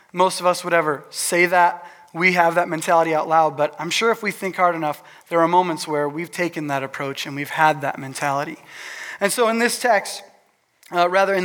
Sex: male